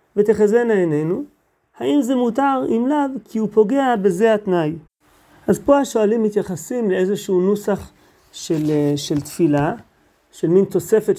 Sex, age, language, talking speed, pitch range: male, 40-59, Hebrew, 130 wpm, 170-230 Hz